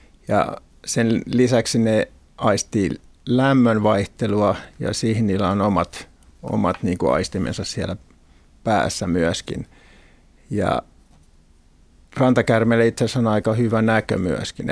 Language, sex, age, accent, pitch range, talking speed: Finnish, male, 50-69, native, 95-115 Hz, 105 wpm